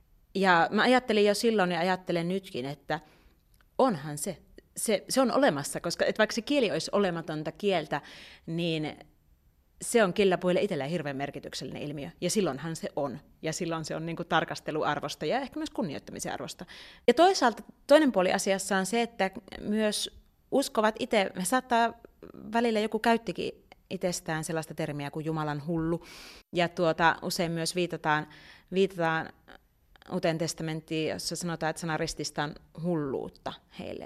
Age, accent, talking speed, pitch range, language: 30-49, native, 140 wpm, 155-210 Hz, Finnish